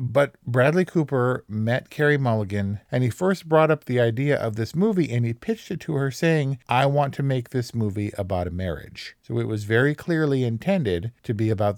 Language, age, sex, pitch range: English, 50-69, male, 105-130 Hz